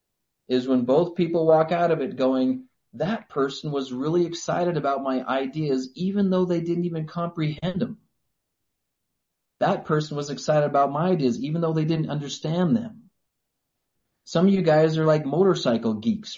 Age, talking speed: 30-49, 165 wpm